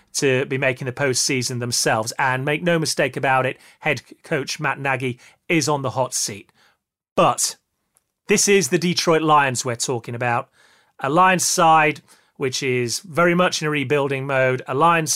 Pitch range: 130-175 Hz